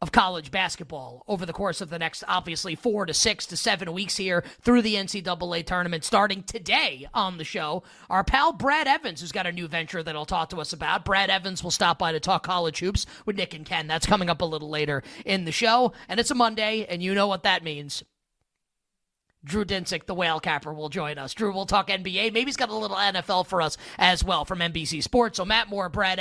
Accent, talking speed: American, 235 wpm